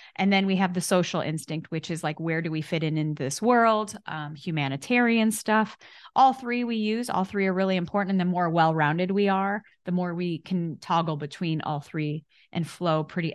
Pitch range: 160-195 Hz